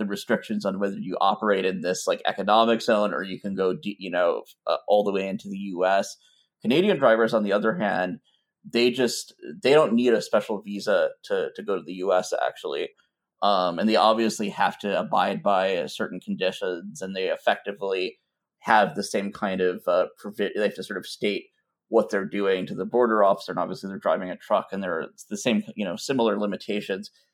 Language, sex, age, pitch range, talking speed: English, male, 20-39, 95-115 Hz, 205 wpm